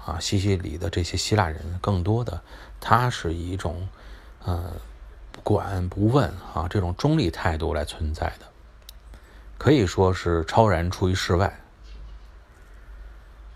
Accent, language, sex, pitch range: native, Chinese, male, 80-95 Hz